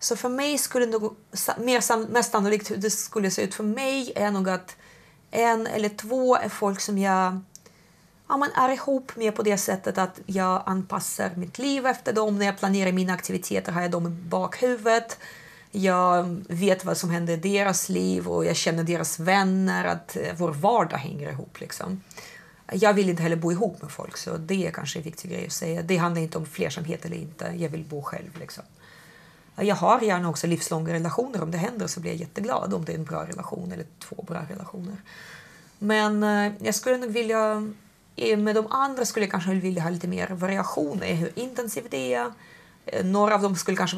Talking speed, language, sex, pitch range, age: 200 wpm, Finnish, female, 170-215 Hz, 30-49